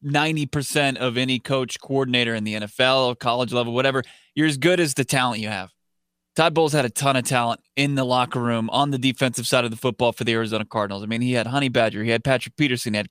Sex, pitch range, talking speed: male, 120-150 Hz, 240 wpm